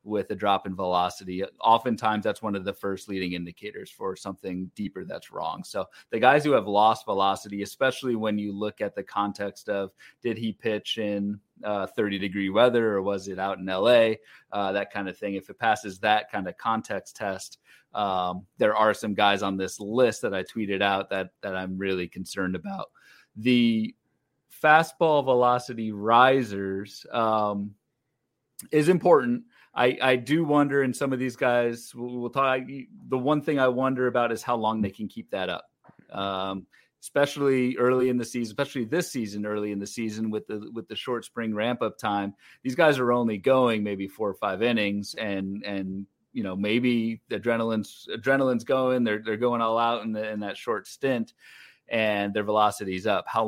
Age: 30-49